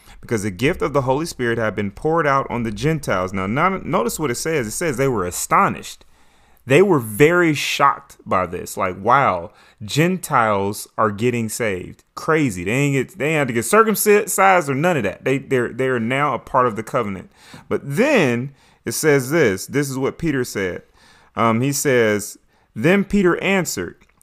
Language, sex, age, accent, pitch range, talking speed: English, male, 30-49, American, 105-150 Hz, 190 wpm